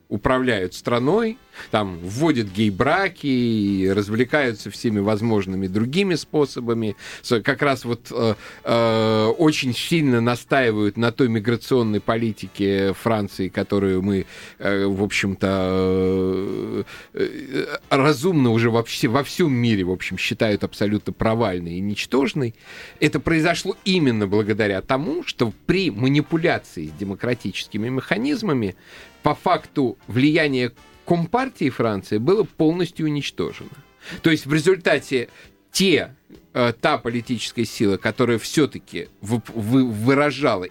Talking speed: 110 wpm